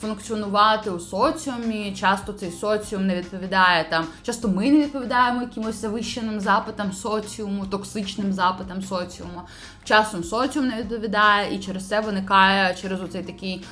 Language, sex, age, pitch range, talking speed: Ukrainian, female, 20-39, 185-250 Hz, 135 wpm